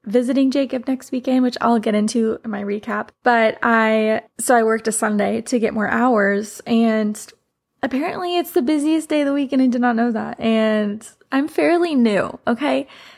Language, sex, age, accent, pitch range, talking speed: English, female, 20-39, American, 220-270 Hz, 190 wpm